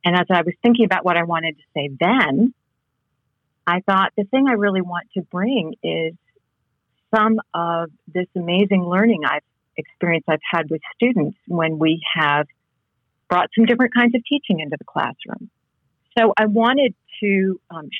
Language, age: English, 40-59